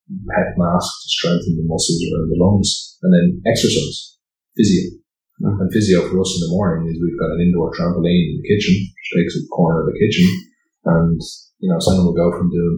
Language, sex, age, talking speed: English, male, 30-49, 205 wpm